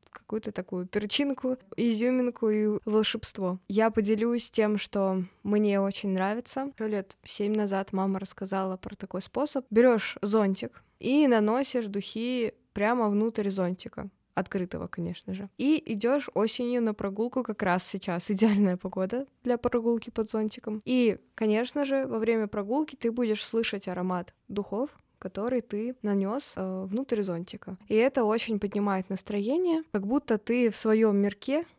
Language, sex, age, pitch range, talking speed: Russian, female, 20-39, 195-230 Hz, 140 wpm